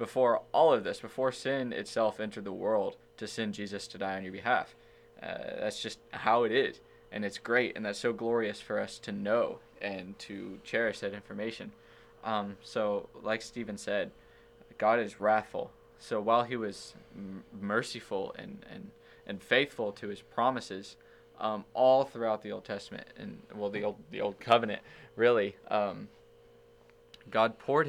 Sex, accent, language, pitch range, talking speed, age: male, American, English, 100-115 Hz, 165 wpm, 20-39